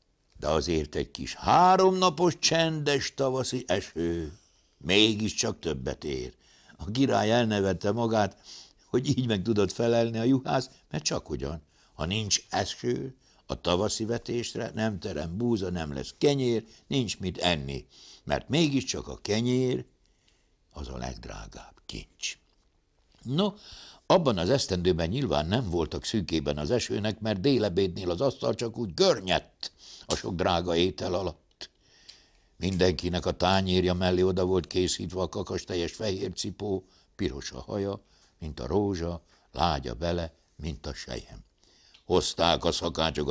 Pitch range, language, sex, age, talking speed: 85-115 Hz, Hungarian, male, 60-79, 135 wpm